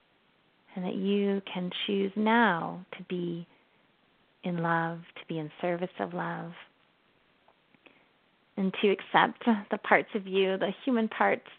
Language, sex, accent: English, female, American